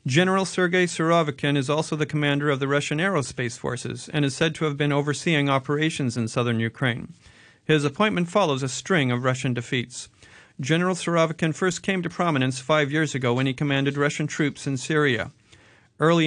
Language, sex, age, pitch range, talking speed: English, male, 40-59, 130-160 Hz, 175 wpm